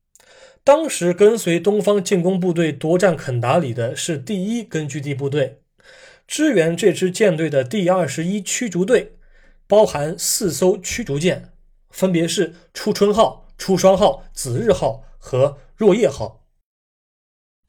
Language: Chinese